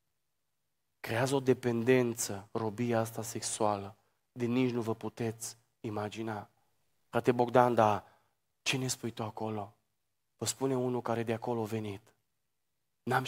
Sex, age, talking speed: male, 30-49, 130 wpm